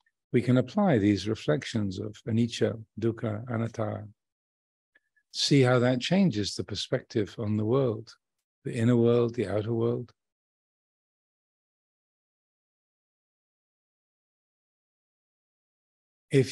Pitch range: 110-135 Hz